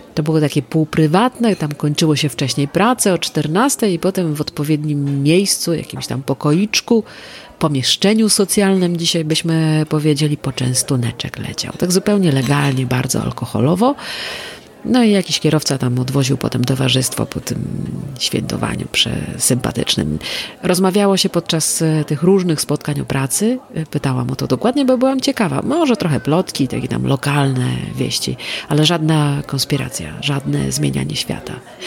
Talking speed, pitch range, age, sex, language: 135 wpm, 140-180 Hz, 40-59, female, Polish